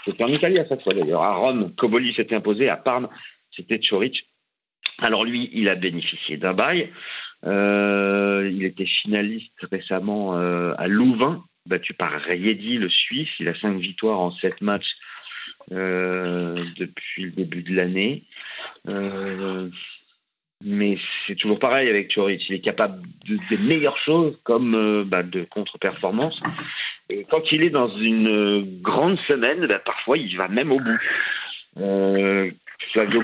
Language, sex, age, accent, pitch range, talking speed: French, male, 50-69, French, 95-115 Hz, 155 wpm